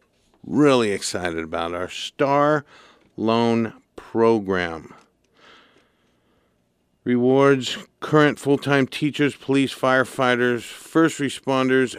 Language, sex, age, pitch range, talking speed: English, male, 50-69, 105-130 Hz, 75 wpm